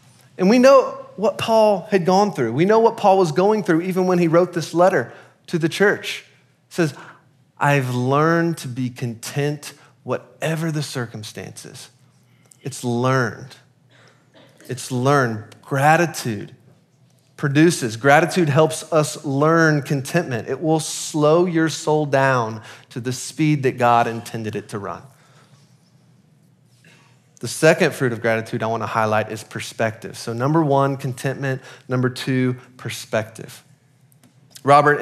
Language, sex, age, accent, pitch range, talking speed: English, male, 30-49, American, 125-155 Hz, 130 wpm